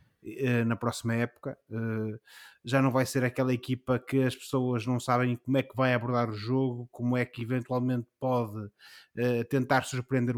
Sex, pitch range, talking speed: male, 110-135 Hz, 160 wpm